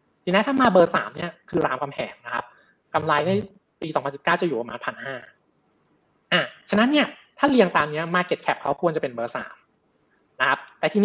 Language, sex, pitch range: Thai, male, 150-205 Hz